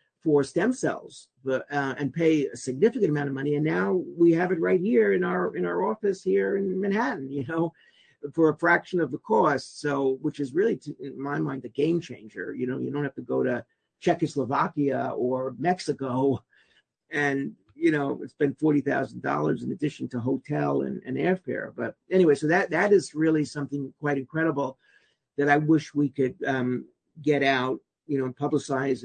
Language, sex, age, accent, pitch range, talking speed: English, male, 50-69, American, 135-165 Hz, 185 wpm